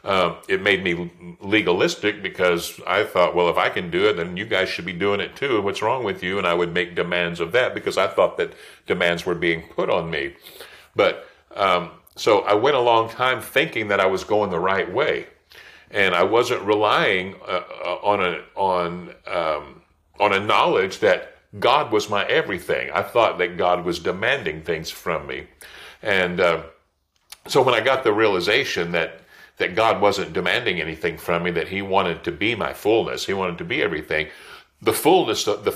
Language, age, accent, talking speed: English, 50-69, American, 195 wpm